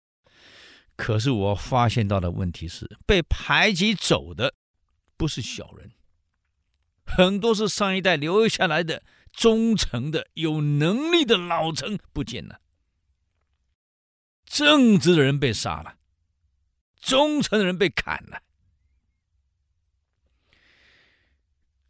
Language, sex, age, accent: Chinese, male, 50-69, native